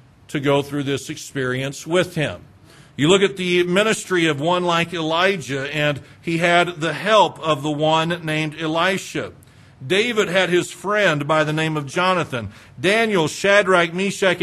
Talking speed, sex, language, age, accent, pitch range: 160 wpm, male, English, 50-69, American, 155-195 Hz